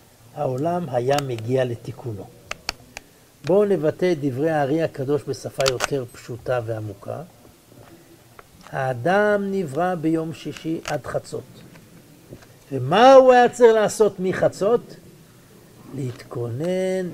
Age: 60-79